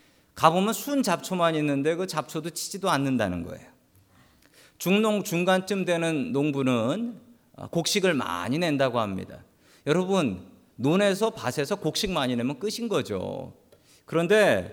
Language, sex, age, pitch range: Korean, male, 40-59, 125-185 Hz